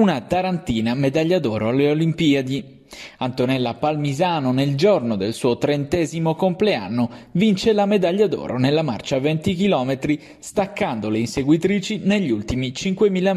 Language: Italian